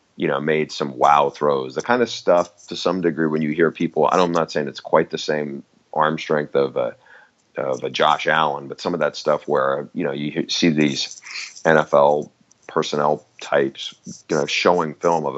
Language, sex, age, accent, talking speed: English, male, 30-49, American, 205 wpm